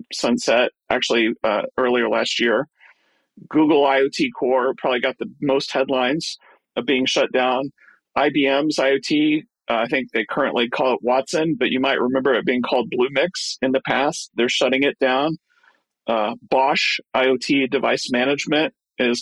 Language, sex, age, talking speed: English, male, 40-59, 155 wpm